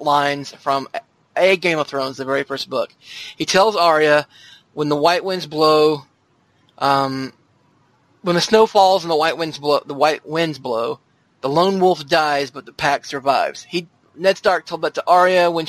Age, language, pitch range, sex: 20-39, English, 145-180 Hz, male